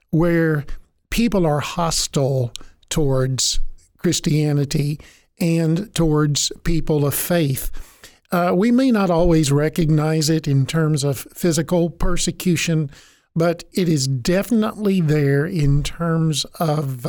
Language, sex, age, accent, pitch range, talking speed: English, male, 50-69, American, 145-175 Hz, 110 wpm